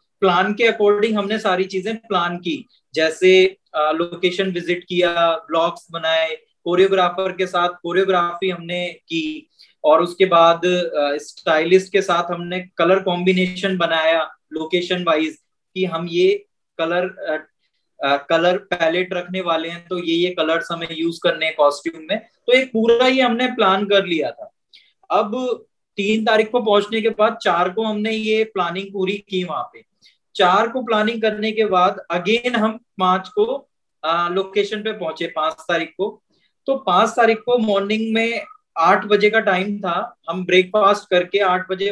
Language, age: Hindi, 20-39